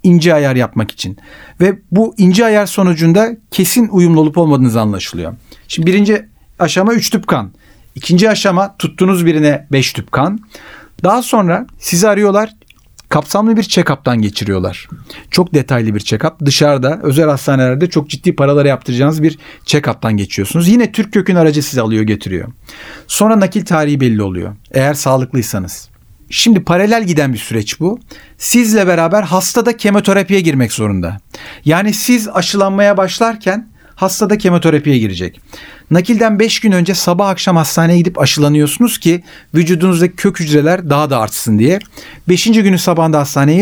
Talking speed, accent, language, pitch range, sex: 140 wpm, native, Turkish, 140-205 Hz, male